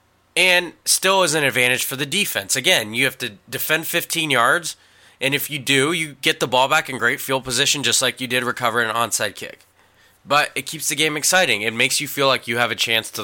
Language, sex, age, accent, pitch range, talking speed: English, male, 20-39, American, 120-155 Hz, 235 wpm